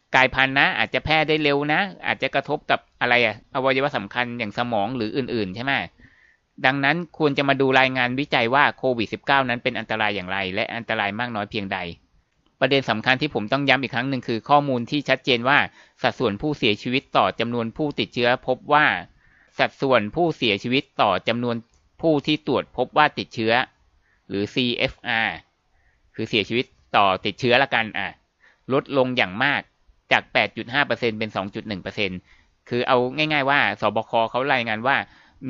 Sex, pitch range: male, 110-135 Hz